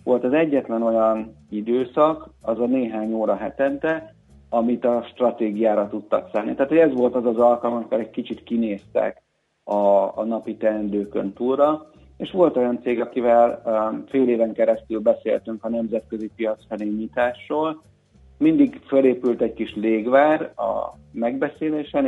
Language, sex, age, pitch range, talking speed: Hungarian, male, 50-69, 105-130 Hz, 140 wpm